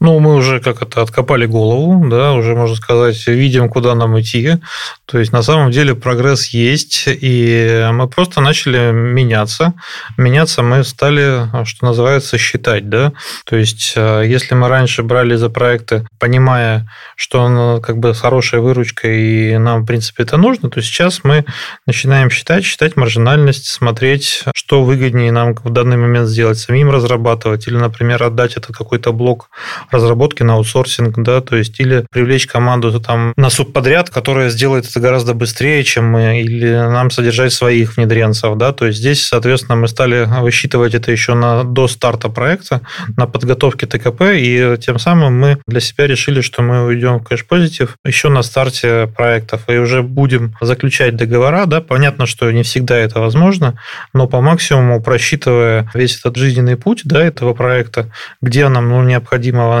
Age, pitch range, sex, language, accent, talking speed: 20-39, 120-135 Hz, male, Russian, native, 165 wpm